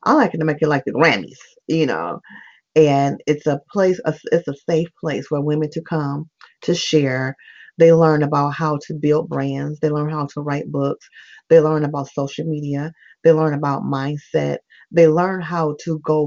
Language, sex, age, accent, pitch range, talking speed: English, female, 30-49, American, 145-180 Hz, 190 wpm